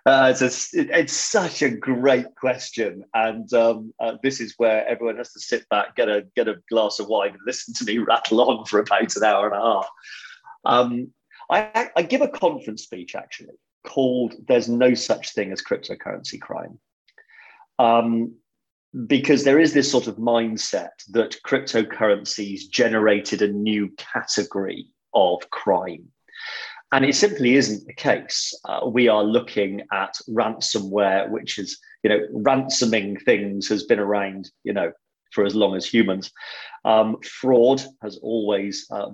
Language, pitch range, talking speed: English, 105-140 Hz, 160 wpm